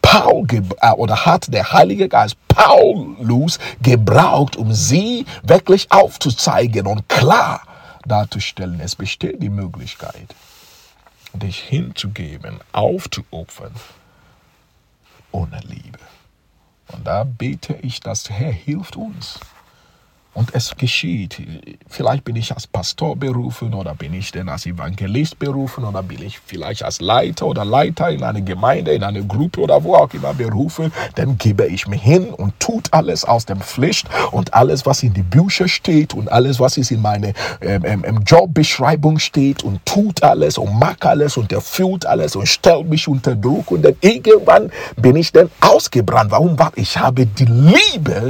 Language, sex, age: English, male, 50-69